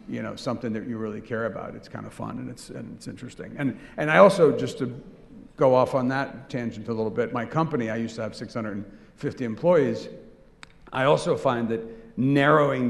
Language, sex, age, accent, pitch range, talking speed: English, male, 50-69, American, 110-130 Hz, 205 wpm